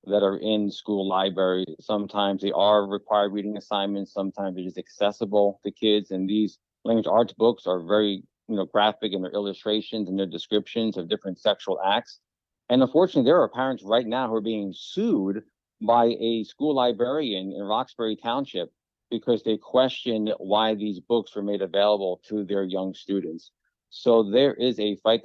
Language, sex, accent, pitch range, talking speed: English, male, American, 100-125 Hz, 175 wpm